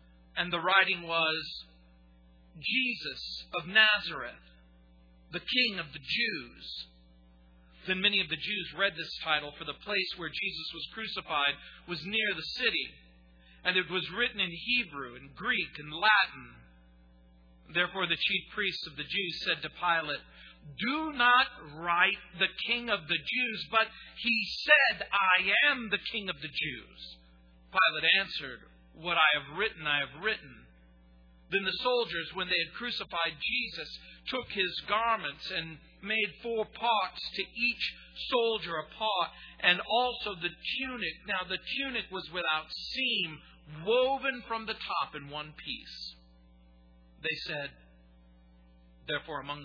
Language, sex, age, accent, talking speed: English, male, 50-69, American, 145 wpm